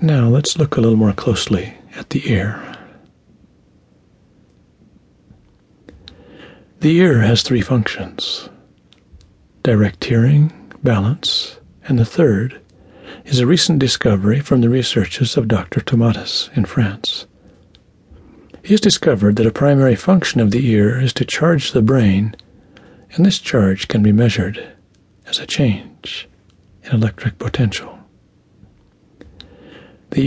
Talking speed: 120 wpm